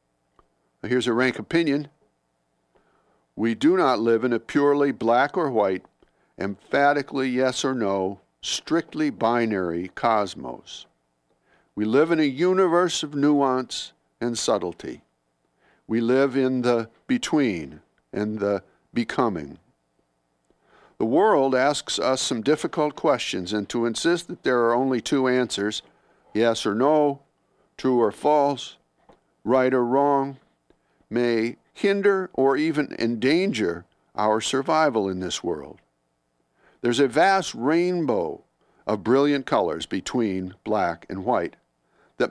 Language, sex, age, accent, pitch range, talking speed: English, male, 60-79, American, 95-140 Hz, 120 wpm